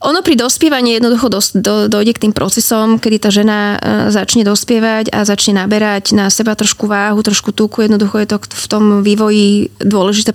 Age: 20-39